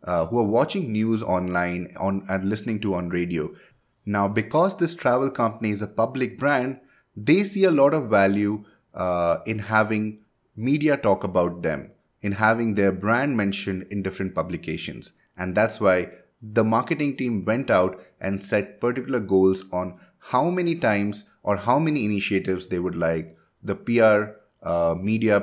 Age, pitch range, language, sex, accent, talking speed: 20-39, 95-130 Hz, English, male, Indian, 165 wpm